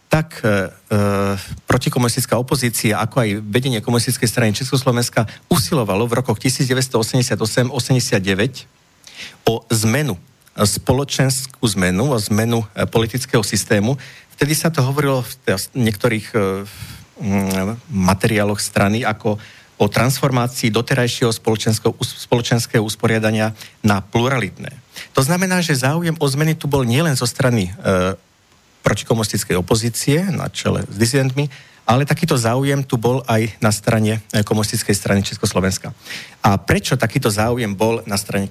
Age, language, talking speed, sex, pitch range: 50-69, Slovak, 120 wpm, male, 105-135 Hz